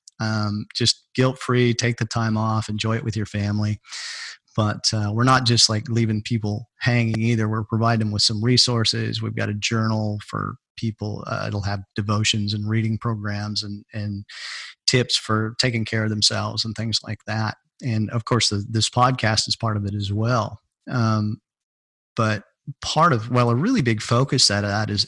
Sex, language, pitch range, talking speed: male, English, 105-115 Hz, 185 wpm